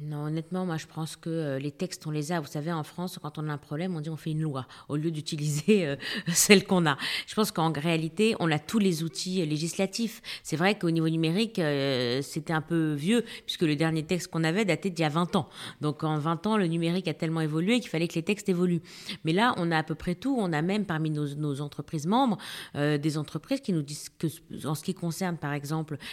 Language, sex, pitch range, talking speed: French, female, 155-195 Hz, 255 wpm